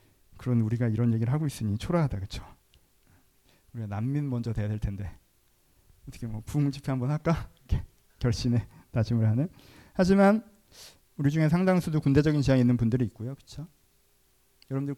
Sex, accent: male, native